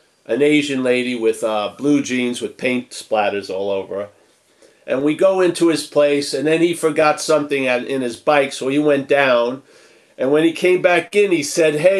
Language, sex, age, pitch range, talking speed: English, male, 50-69, 135-175 Hz, 205 wpm